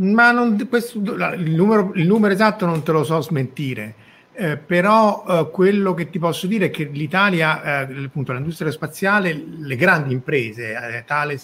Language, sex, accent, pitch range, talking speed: Italian, male, native, 140-175 Hz, 175 wpm